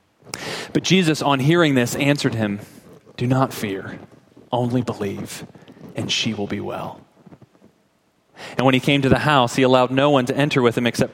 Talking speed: 180 wpm